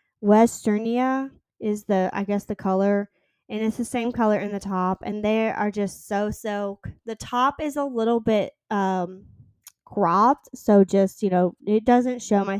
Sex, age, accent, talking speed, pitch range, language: female, 10-29, American, 175 wpm, 190-230 Hz, English